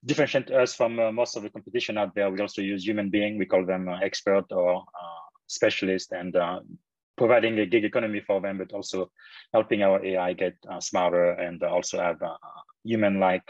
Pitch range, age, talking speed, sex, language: 100-125 Hz, 30-49, 195 wpm, male, English